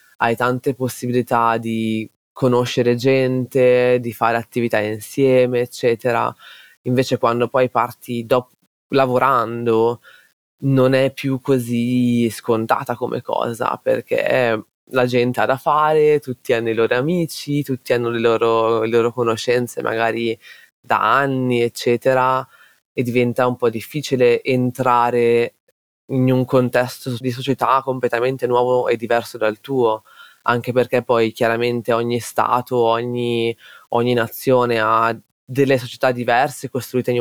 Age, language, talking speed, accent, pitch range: 20-39, Italian, 125 wpm, native, 115-130 Hz